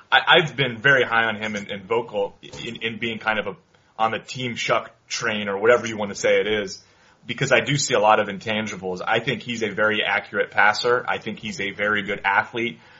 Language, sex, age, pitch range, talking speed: English, male, 30-49, 100-120 Hz, 215 wpm